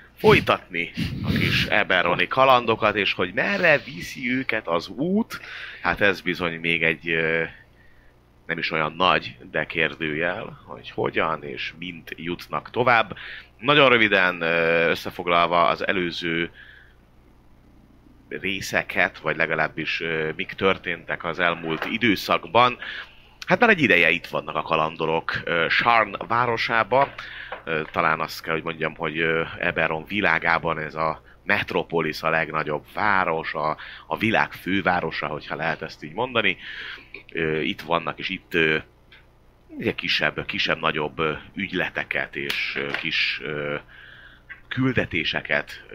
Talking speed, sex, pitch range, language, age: 115 wpm, male, 80-90 Hz, Hungarian, 30-49